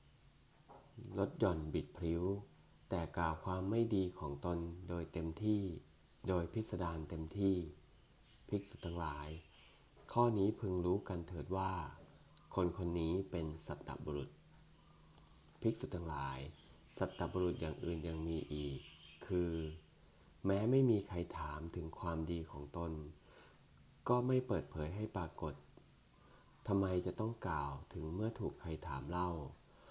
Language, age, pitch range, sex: English, 30-49, 80-95 Hz, male